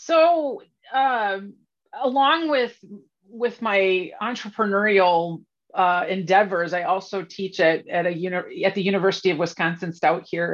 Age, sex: 30-49, female